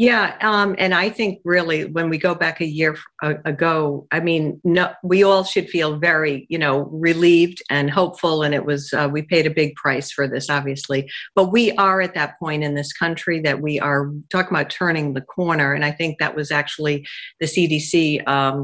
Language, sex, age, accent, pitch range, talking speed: English, female, 50-69, American, 150-180 Hz, 205 wpm